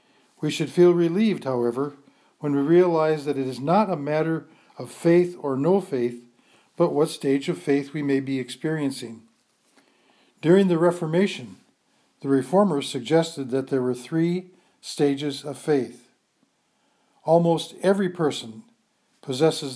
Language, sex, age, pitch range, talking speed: English, male, 50-69, 140-175 Hz, 135 wpm